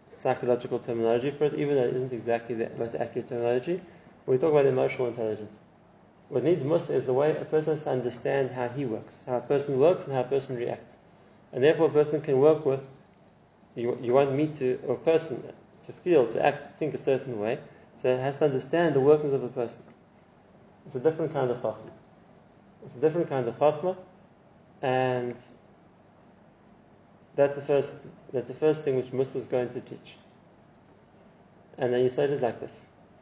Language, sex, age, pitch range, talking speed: English, male, 20-39, 125-150 Hz, 195 wpm